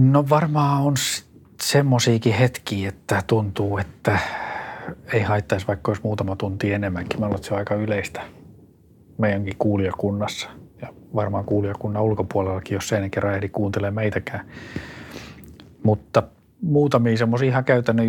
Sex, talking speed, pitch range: male, 120 wpm, 95-105 Hz